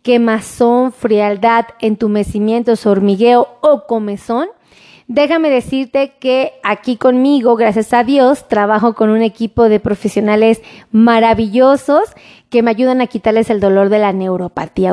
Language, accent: Spanish, Mexican